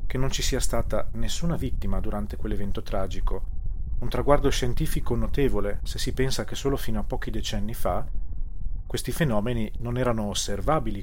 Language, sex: Italian, male